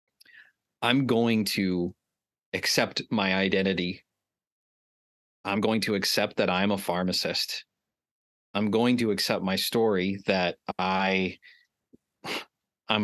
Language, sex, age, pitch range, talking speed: English, male, 30-49, 95-115 Hz, 100 wpm